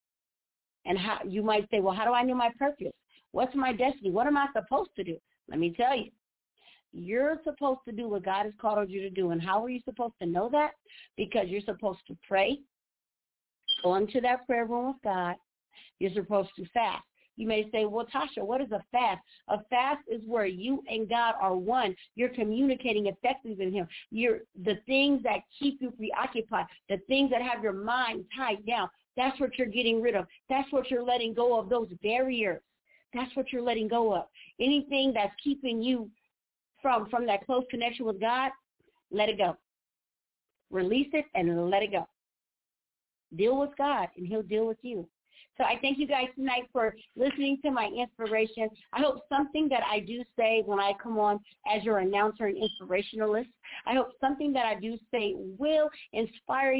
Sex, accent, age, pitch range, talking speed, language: female, American, 50-69, 210-265 Hz, 190 wpm, English